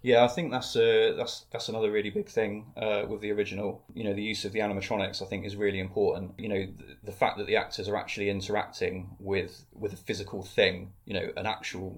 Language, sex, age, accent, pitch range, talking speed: English, male, 20-39, British, 100-120 Hz, 235 wpm